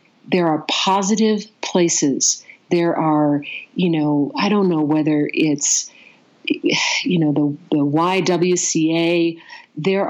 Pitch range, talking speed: 160-205 Hz, 115 wpm